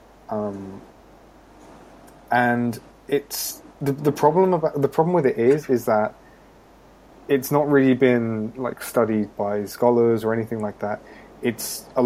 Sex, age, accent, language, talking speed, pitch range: male, 20-39, British, English, 140 wpm, 110-130 Hz